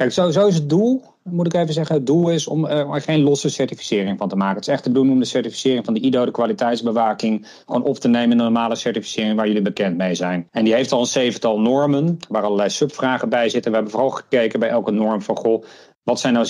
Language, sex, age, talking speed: Dutch, male, 40-59, 260 wpm